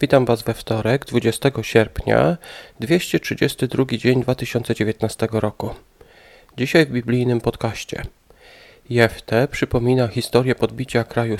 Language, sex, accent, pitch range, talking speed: Polish, male, native, 115-140 Hz, 100 wpm